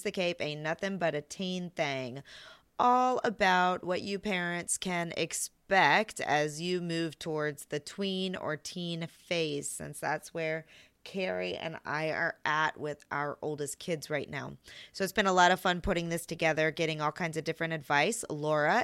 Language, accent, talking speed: English, American, 175 wpm